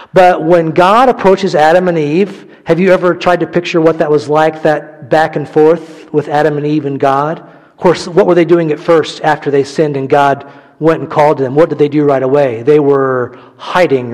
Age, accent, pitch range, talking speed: 40-59, American, 145-180 Hz, 225 wpm